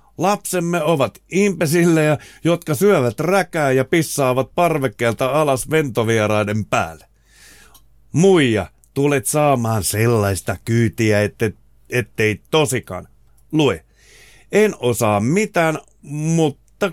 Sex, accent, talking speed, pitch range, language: male, native, 90 wpm, 115-165 Hz, Finnish